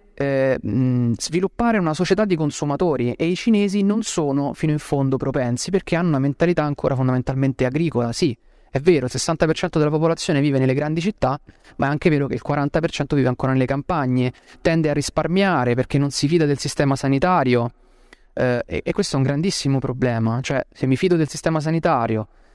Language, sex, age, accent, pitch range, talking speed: Italian, male, 30-49, native, 130-165 Hz, 185 wpm